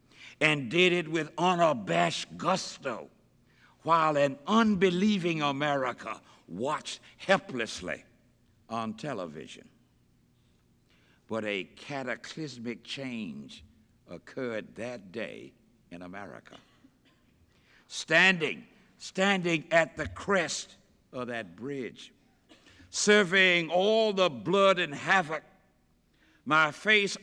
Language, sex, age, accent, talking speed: English, male, 60-79, American, 85 wpm